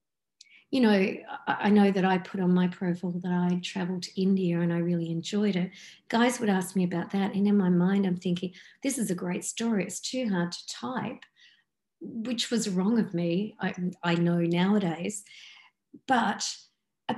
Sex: female